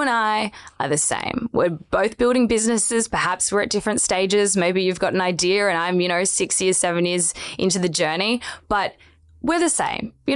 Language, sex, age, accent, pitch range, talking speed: English, female, 20-39, Australian, 170-235 Hz, 205 wpm